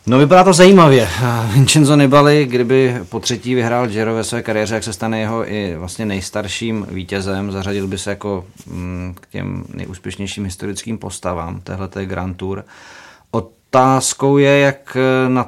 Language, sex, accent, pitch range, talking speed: Czech, male, native, 100-115 Hz, 150 wpm